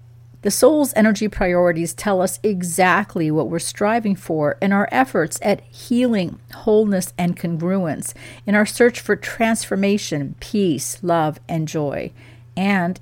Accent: American